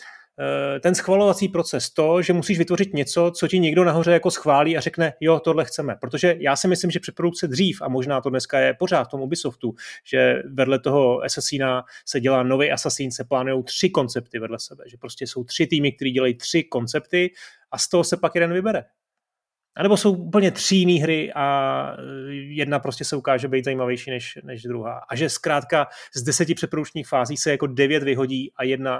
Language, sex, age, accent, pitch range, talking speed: Czech, male, 30-49, native, 130-165 Hz, 195 wpm